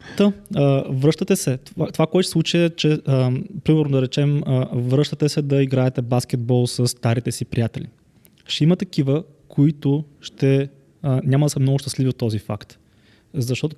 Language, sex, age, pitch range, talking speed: Bulgarian, male, 20-39, 130-155 Hz, 165 wpm